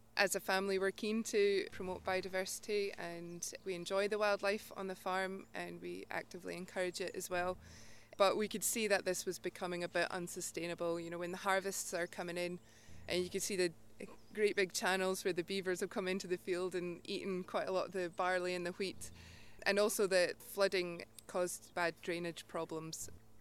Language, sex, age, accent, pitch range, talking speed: English, female, 20-39, British, 155-185 Hz, 195 wpm